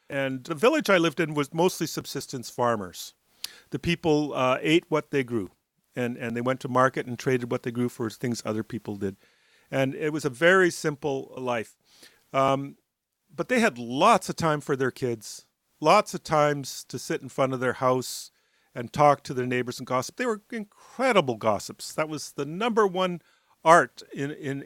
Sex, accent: male, American